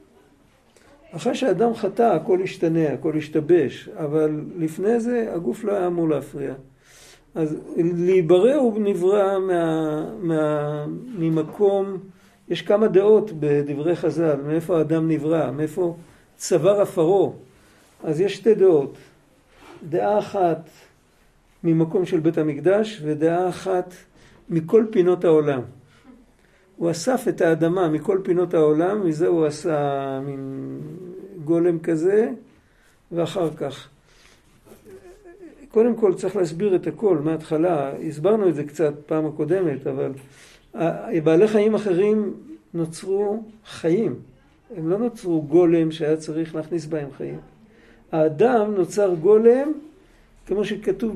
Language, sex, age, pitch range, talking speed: Hebrew, male, 50-69, 155-200 Hz, 110 wpm